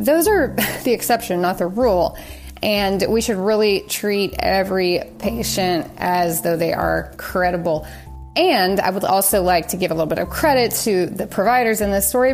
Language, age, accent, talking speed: English, 30-49, American, 180 wpm